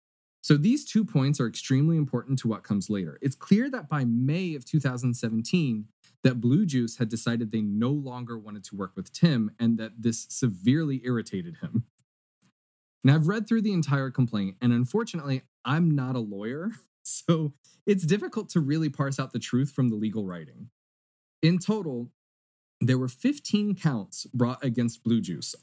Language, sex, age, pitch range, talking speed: English, male, 20-39, 115-160 Hz, 170 wpm